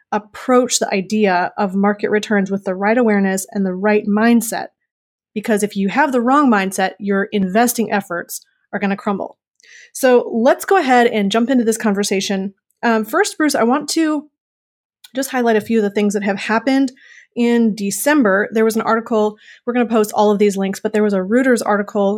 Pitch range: 205-235 Hz